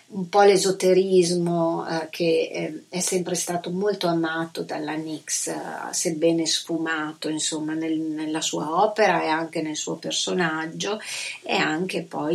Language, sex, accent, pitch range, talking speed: Italian, female, native, 160-180 Hz, 140 wpm